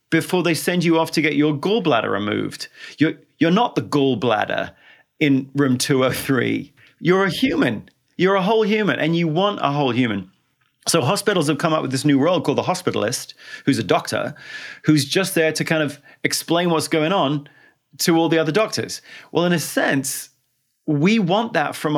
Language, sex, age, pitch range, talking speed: English, male, 30-49, 145-190 Hz, 190 wpm